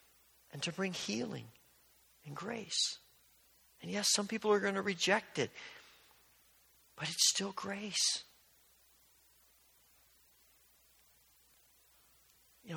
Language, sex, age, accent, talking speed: English, male, 40-59, American, 95 wpm